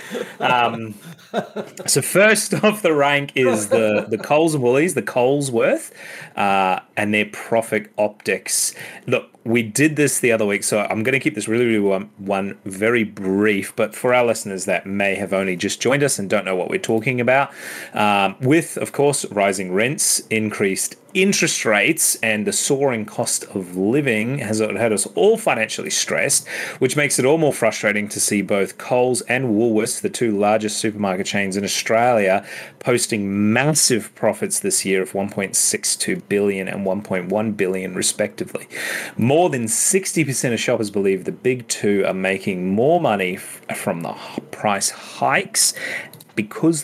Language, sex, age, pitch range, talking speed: English, male, 30-49, 100-145 Hz, 160 wpm